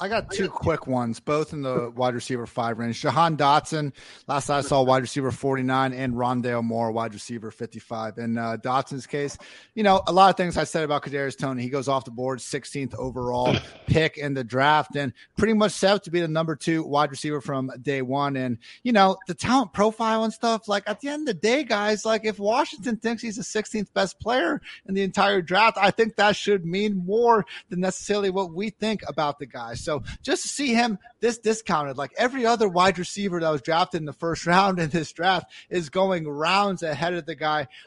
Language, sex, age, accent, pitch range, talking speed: English, male, 30-49, American, 140-195 Hz, 220 wpm